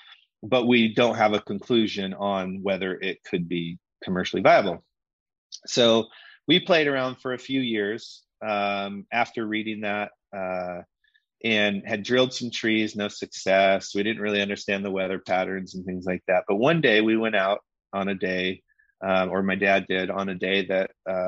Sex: male